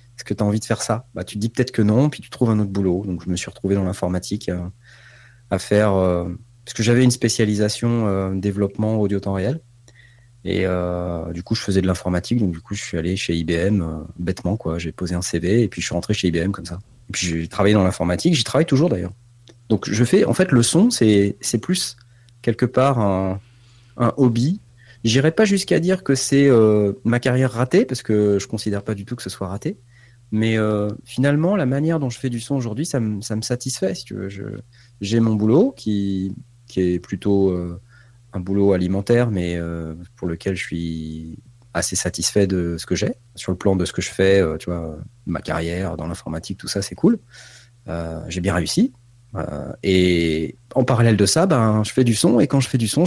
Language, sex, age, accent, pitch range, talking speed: French, male, 30-49, French, 90-120 Hz, 230 wpm